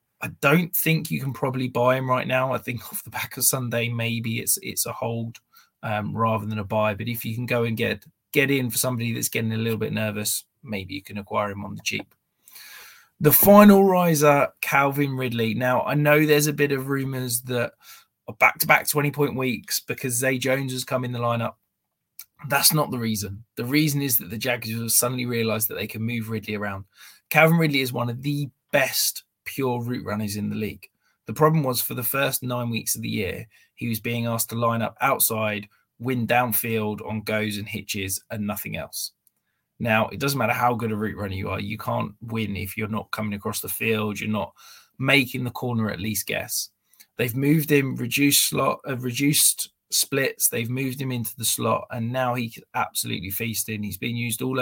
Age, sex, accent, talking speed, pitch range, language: 20-39, male, British, 215 wpm, 110-130 Hz, English